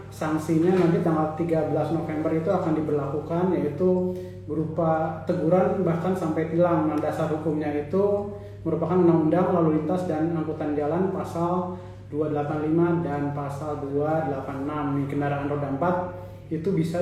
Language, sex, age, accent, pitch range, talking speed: Indonesian, male, 30-49, native, 145-170 Hz, 125 wpm